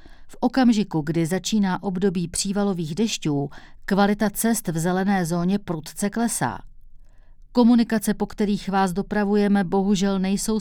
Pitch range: 170-205 Hz